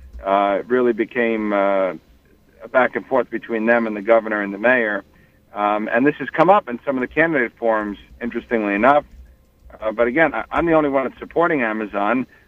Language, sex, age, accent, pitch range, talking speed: English, male, 50-69, American, 120-145 Hz, 195 wpm